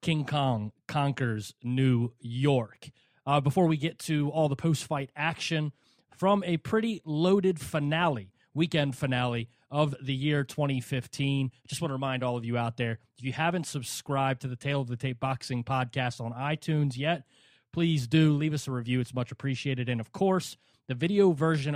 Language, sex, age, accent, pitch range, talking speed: English, male, 30-49, American, 130-155 Hz, 180 wpm